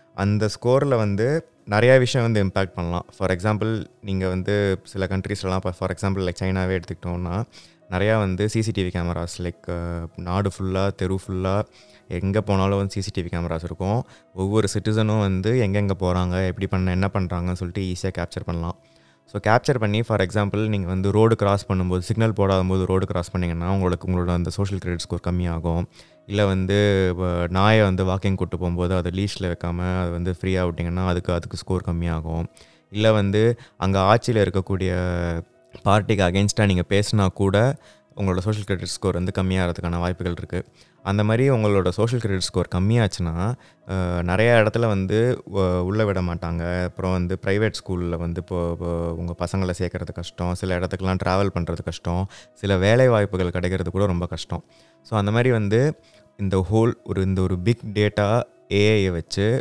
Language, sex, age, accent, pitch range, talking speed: Tamil, male, 20-39, native, 90-105 Hz, 155 wpm